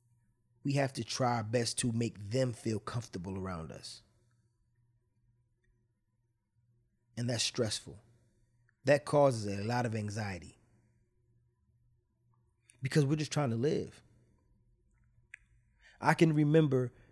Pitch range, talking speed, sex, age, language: 110-125 Hz, 110 wpm, male, 20-39, English